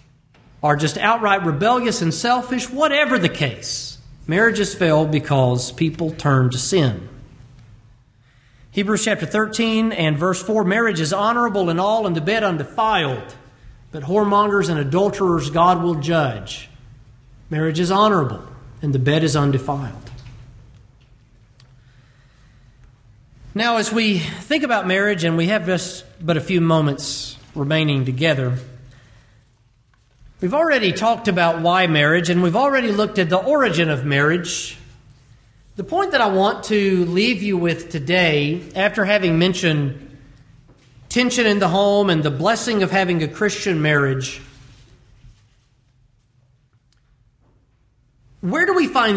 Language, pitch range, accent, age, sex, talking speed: English, 125-195 Hz, American, 40-59, male, 130 wpm